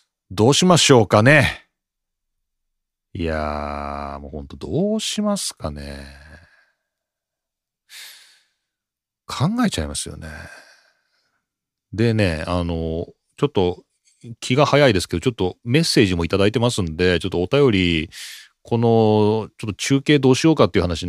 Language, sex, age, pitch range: Japanese, male, 40-59, 95-140 Hz